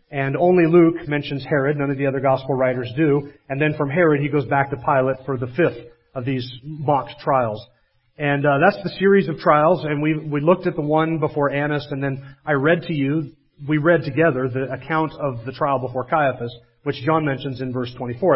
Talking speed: 215 wpm